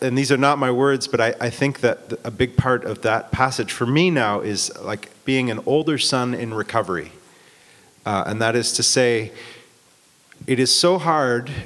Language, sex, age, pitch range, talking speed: English, male, 30-49, 115-140 Hz, 195 wpm